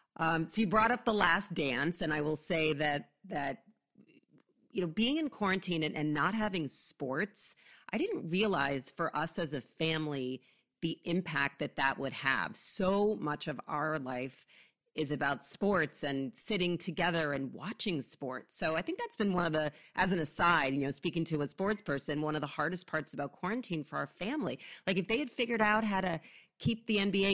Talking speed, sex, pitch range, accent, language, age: 200 wpm, female, 145-190 Hz, American, English, 40-59